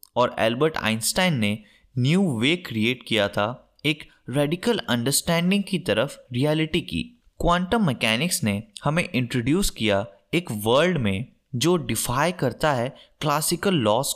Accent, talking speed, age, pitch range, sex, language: native, 130 wpm, 20-39, 115-185 Hz, male, Hindi